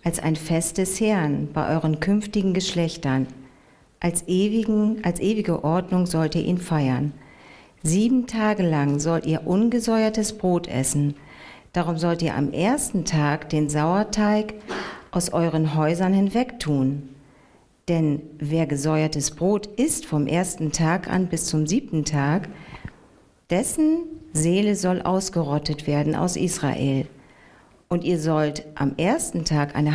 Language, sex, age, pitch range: German, female, 50-69, 150-195 Hz